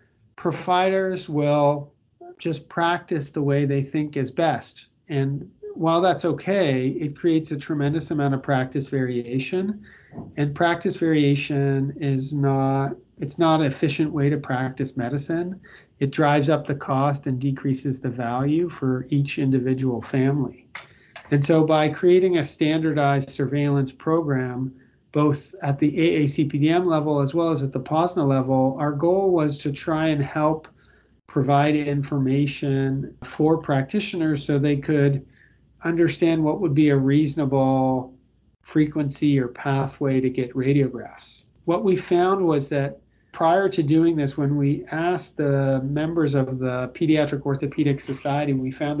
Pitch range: 135-160 Hz